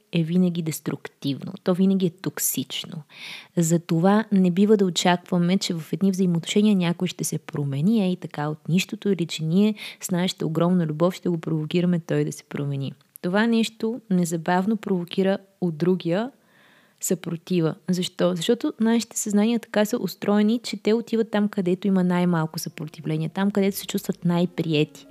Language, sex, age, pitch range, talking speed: Bulgarian, female, 20-39, 170-205 Hz, 155 wpm